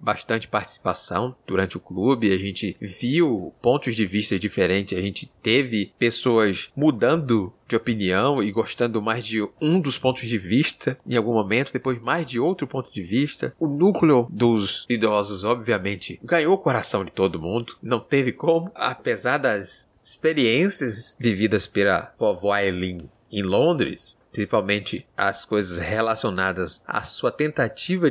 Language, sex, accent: Portuguese, male, Brazilian